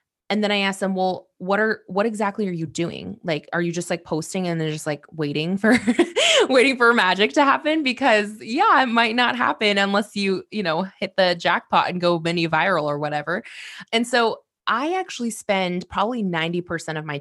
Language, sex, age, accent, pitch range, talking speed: English, female, 20-39, American, 165-210 Hz, 200 wpm